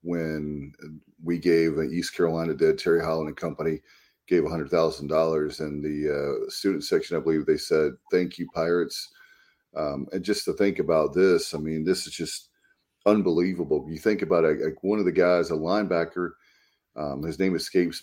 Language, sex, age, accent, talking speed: English, male, 40-59, American, 180 wpm